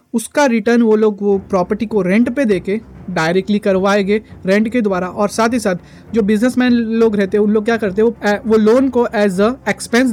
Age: 20-39